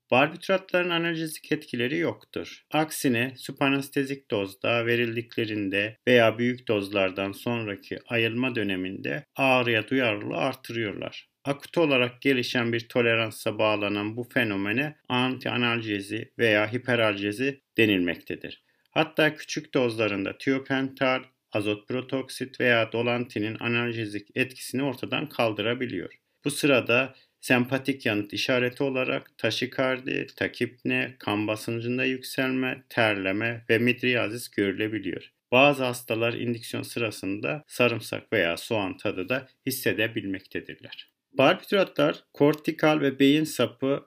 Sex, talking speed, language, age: male, 95 wpm, Turkish, 50-69